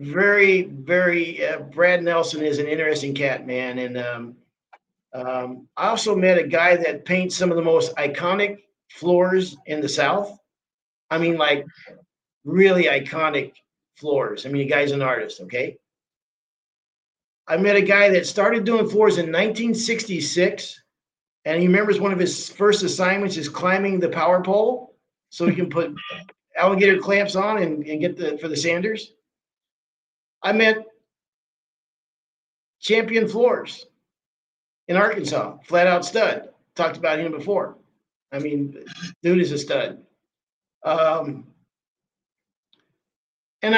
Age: 50-69